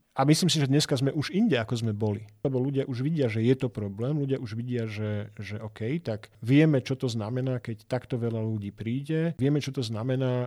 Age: 40-59